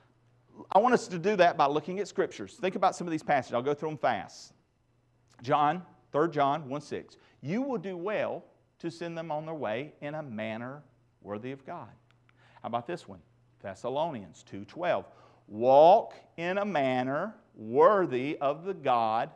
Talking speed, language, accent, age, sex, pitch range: 170 wpm, English, American, 50-69, male, 120-155 Hz